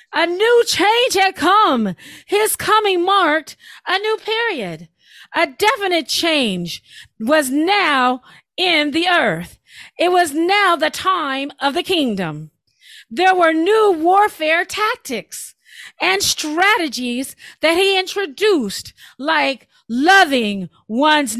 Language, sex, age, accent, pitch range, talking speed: English, female, 40-59, American, 230-375 Hz, 110 wpm